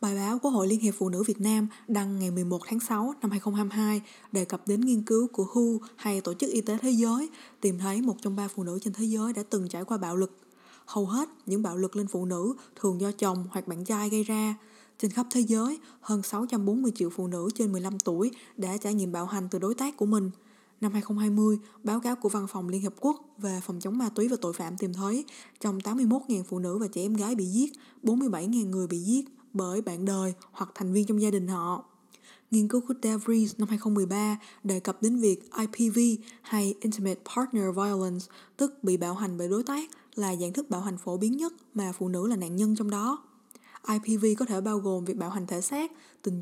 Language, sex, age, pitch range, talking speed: Vietnamese, female, 20-39, 190-230 Hz, 230 wpm